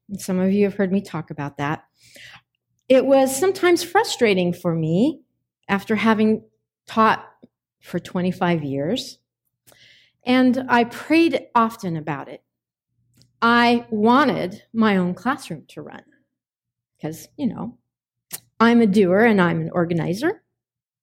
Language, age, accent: English, 40-59, American